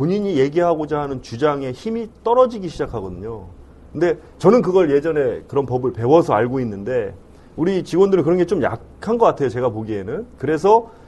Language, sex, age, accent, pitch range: Korean, male, 30-49, native, 115-185 Hz